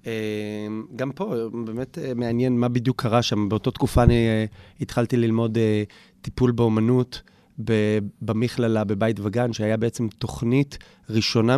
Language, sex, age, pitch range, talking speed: Hebrew, male, 30-49, 110-130 Hz, 140 wpm